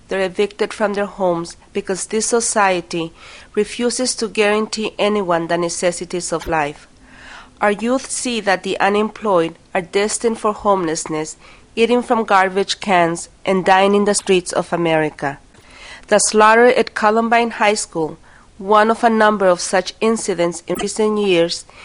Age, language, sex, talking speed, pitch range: 40-59, English, female, 145 wpm, 175-220 Hz